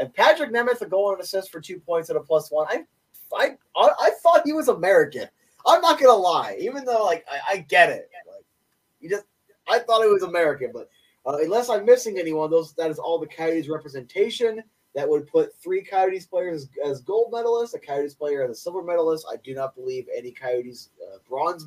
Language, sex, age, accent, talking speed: English, male, 20-39, American, 215 wpm